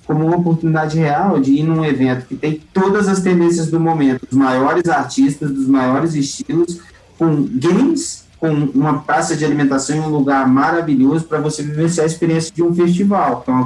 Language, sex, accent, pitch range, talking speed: Portuguese, male, Brazilian, 115-165 Hz, 190 wpm